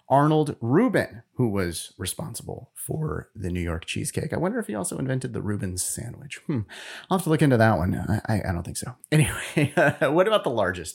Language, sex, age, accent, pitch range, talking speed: English, male, 30-49, American, 100-155 Hz, 205 wpm